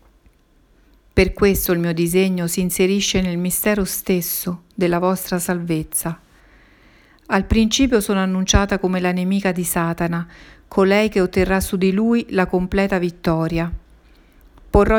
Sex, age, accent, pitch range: female, 50-69, native, 175-200 Hz